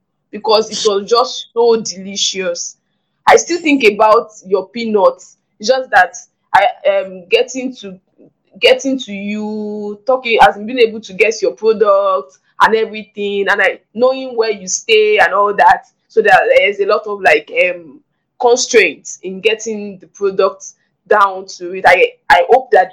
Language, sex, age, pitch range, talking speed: English, female, 10-29, 195-260 Hz, 160 wpm